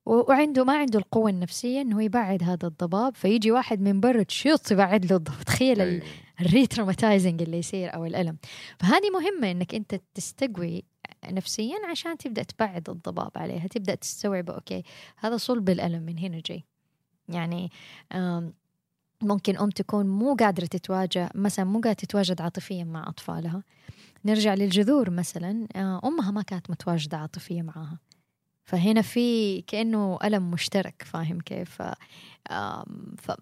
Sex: female